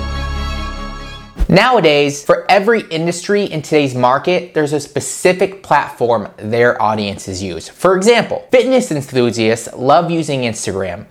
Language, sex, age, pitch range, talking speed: English, male, 20-39, 135-195 Hz, 115 wpm